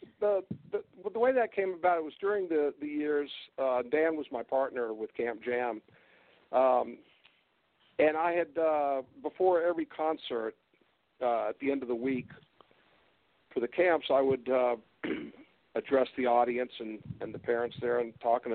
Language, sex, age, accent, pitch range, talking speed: English, male, 50-69, American, 115-155 Hz, 170 wpm